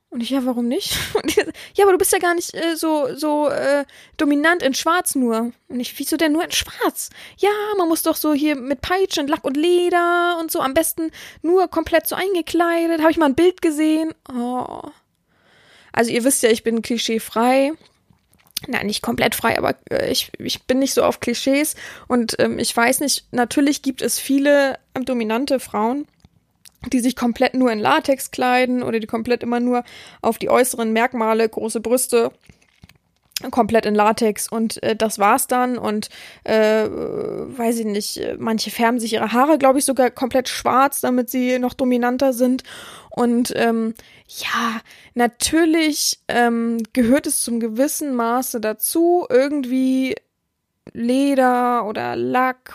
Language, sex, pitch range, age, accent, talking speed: German, female, 235-310 Hz, 20-39, German, 165 wpm